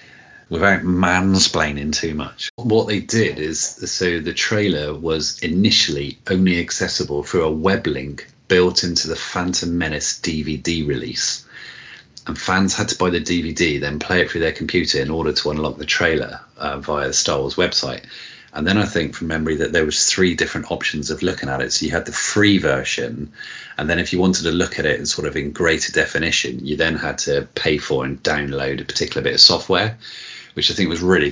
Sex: male